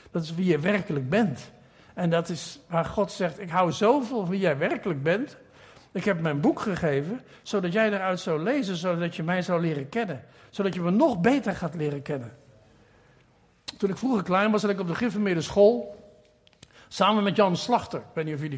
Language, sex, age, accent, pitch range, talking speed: Dutch, male, 60-79, Dutch, 160-205 Hz, 205 wpm